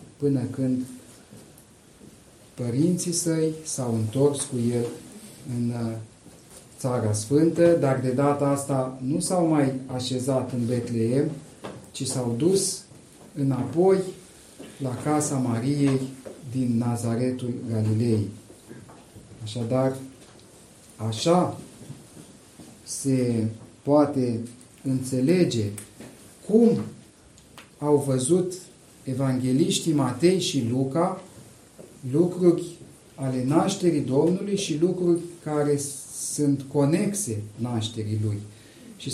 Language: Romanian